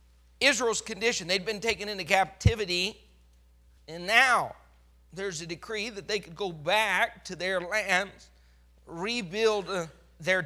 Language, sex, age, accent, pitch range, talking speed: English, male, 40-59, American, 135-220 Hz, 125 wpm